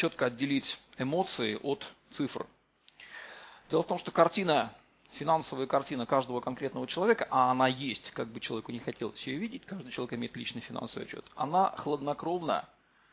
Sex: male